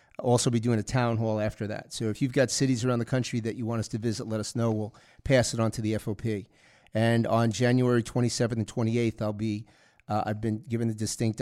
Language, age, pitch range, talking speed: English, 40-59, 110-125 Hz, 240 wpm